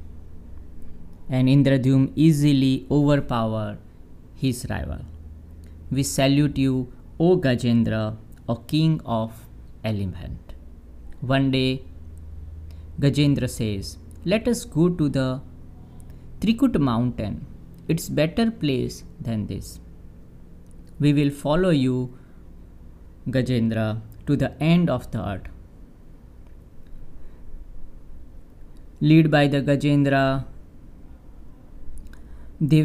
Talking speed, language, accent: 85 wpm, Hindi, native